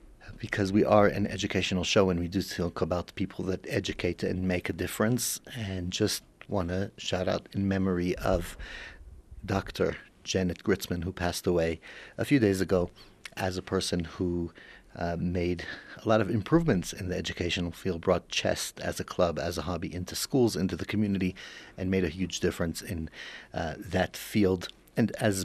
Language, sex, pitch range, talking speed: English, male, 85-105 Hz, 175 wpm